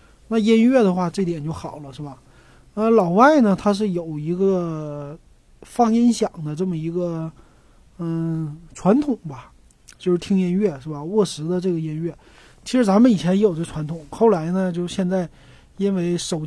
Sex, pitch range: male, 160-205 Hz